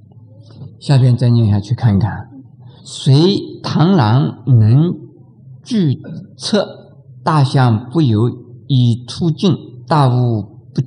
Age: 50-69